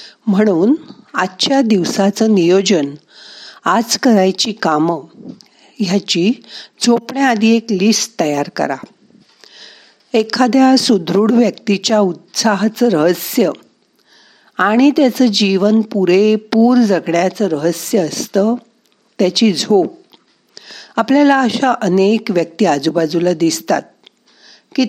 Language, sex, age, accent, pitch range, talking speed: Marathi, female, 50-69, native, 180-230 Hz, 80 wpm